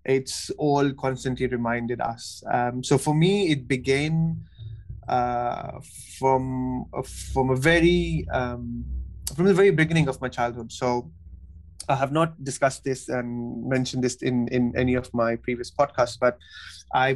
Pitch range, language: 120-135 Hz, English